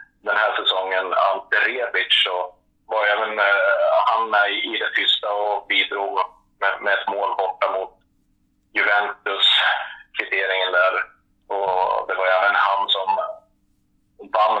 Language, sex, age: Swedish, male, 30-49